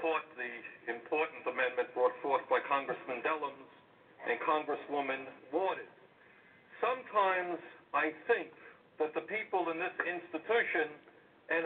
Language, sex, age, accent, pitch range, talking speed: English, male, 60-79, American, 180-275 Hz, 110 wpm